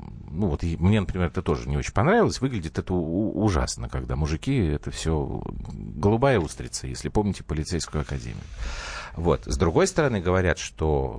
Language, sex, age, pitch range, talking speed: Russian, male, 50-69, 75-105 Hz, 160 wpm